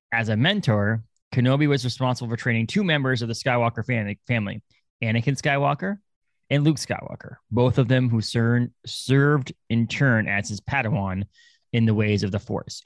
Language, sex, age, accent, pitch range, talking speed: English, male, 20-39, American, 100-125 Hz, 165 wpm